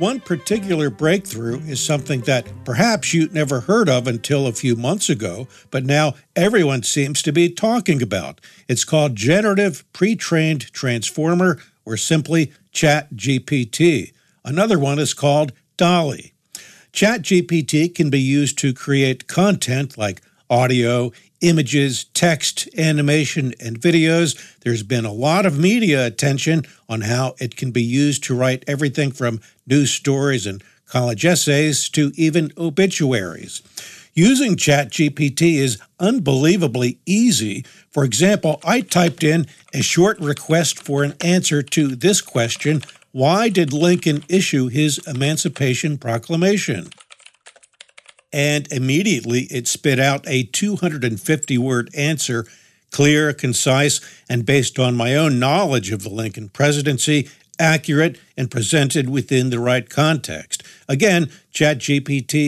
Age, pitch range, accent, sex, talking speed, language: 50-69, 130-165 Hz, American, male, 125 wpm, English